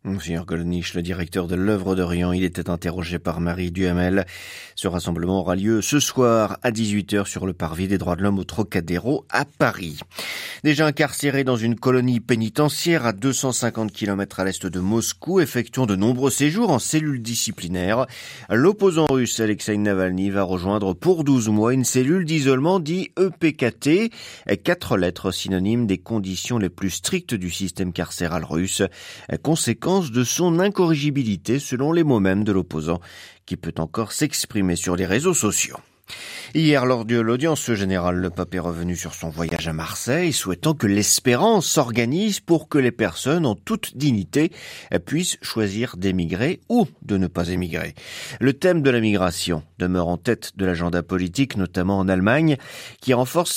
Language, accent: French, French